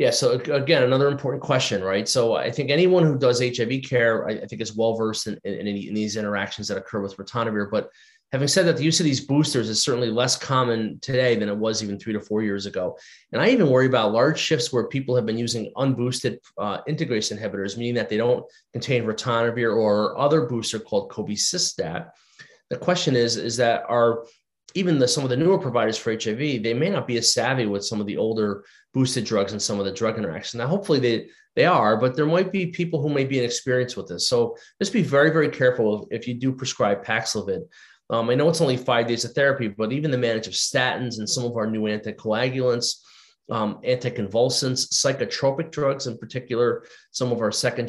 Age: 30-49